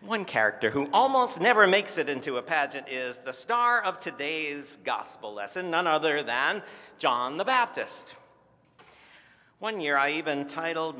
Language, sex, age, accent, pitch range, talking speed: English, male, 50-69, American, 140-215 Hz, 155 wpm